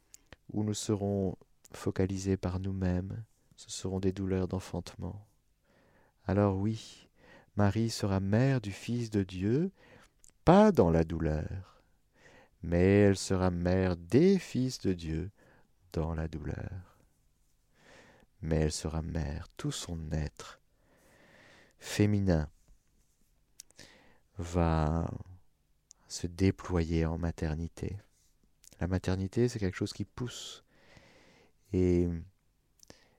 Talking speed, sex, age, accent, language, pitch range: 100 wpm, male, 50-69, French, French, 85-110 Hz